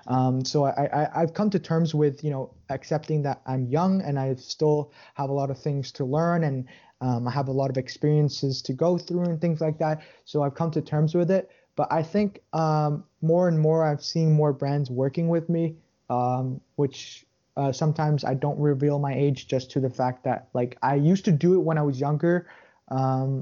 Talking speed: 220 wpm